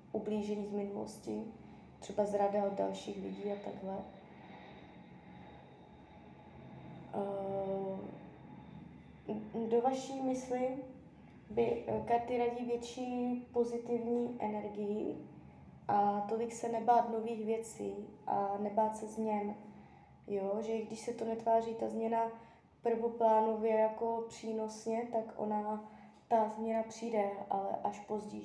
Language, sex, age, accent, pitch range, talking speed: Czech, female, 20-39, native, 205-230 Hz, 100 wpm